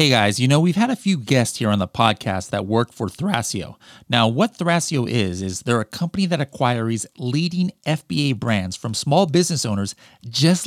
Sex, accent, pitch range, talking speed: male, American, 110-165 Hz, 195 wpm